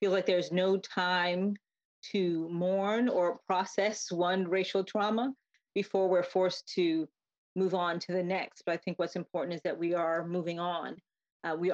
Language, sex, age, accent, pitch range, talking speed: English, female, 40-59, American, 175-195 Hz, 175 wpm